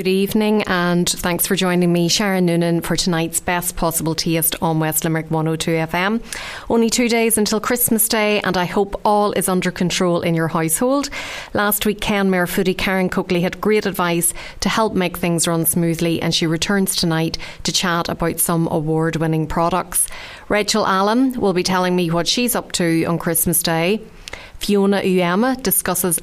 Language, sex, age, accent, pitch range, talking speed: English, female, 30-49, Irish, 165-195 Hz, 170 wpm